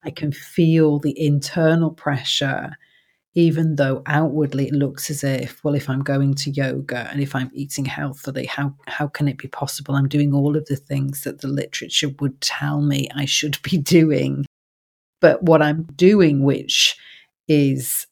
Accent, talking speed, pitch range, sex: British, 170 wpm, 140-150 Hz, female